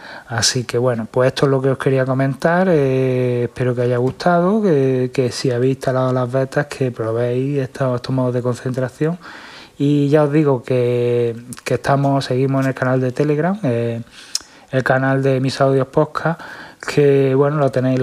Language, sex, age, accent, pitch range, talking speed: Spanish, male, 20-39, Spanish, 120-135 Hz, 185 wpm